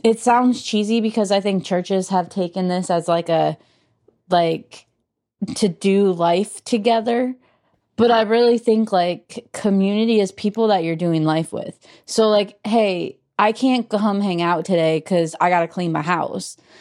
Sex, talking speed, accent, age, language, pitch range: female, 170 wpm, American, 20-39, English, 165-205 Hz